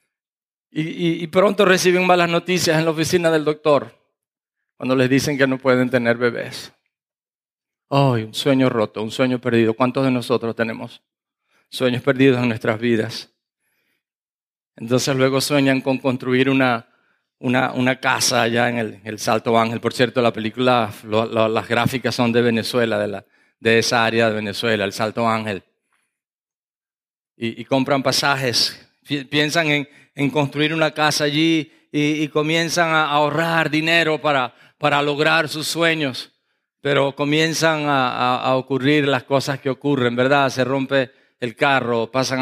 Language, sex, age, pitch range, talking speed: English, male, 40-59, 120-145 Hz, 150 wpm